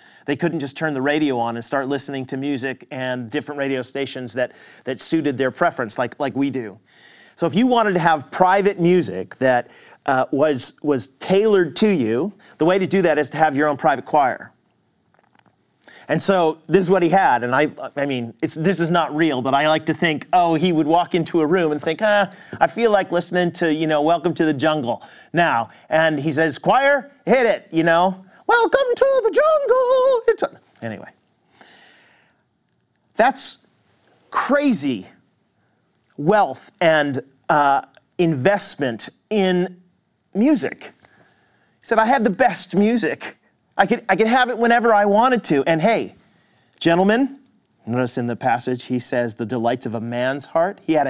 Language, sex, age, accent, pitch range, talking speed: English, male, 40-59, American, 140-200 Hz, 180 wpm